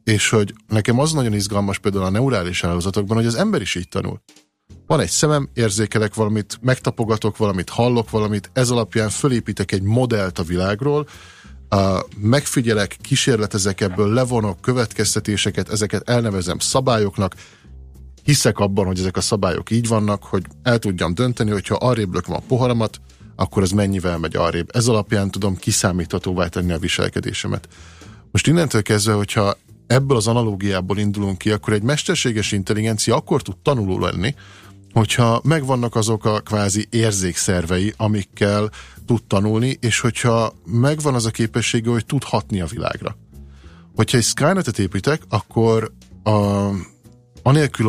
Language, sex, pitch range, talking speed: Hungarian, male, 100-120 Hz, 140 wpm